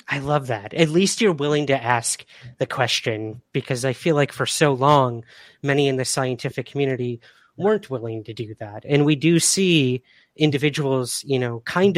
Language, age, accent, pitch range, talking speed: English, 30-49, American, 130-165 Hz, 180 wpm